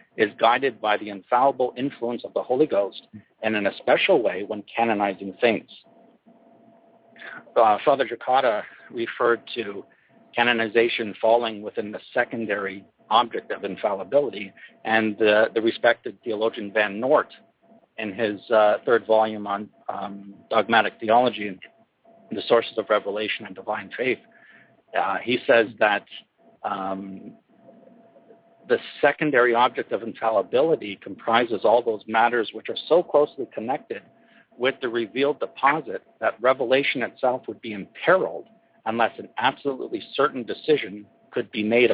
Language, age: English, 50-69